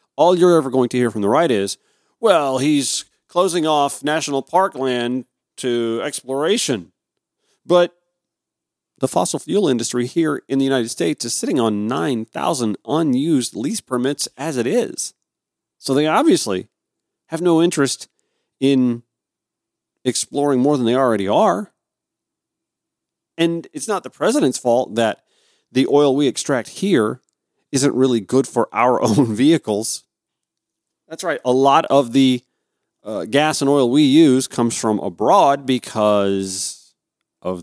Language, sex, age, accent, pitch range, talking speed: English, male, 40-59, American, 110-145 Hz, 140 wpm